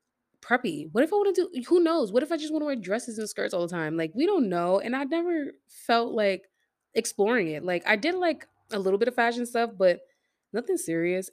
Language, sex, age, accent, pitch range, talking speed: English, female, 20-39, American, 175-260 Hz, 245 wpm